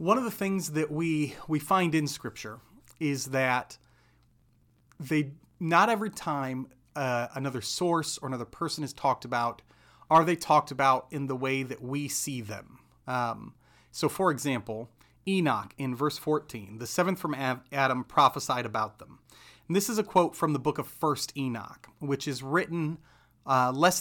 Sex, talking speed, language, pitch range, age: male, 165 wpm, English, 120-155 Hz, 30-49